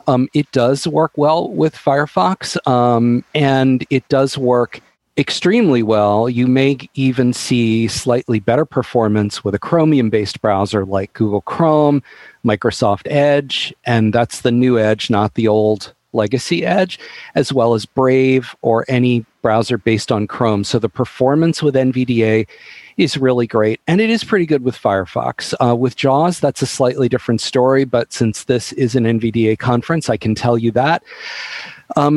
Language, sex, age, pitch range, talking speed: English, male, 40-59, 115-150 Hz, 160 wpm